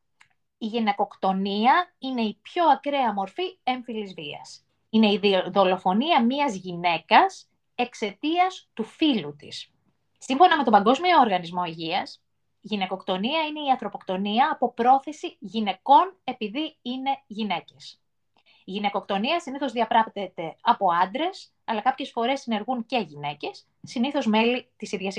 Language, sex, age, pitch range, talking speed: Greek, female, 20-39, 195-280 Hz, 120 wpm